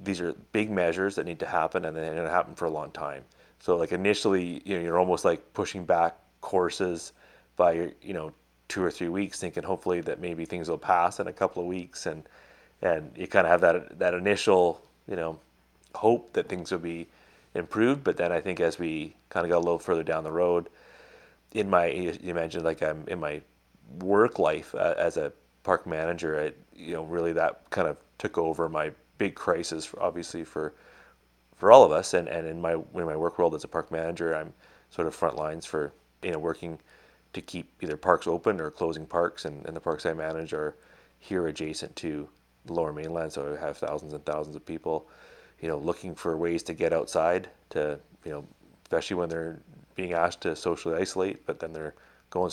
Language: English